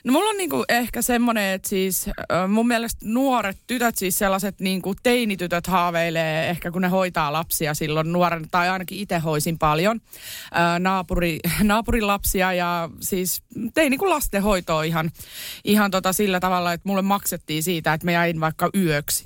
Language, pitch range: Finnish, 165-210 Hz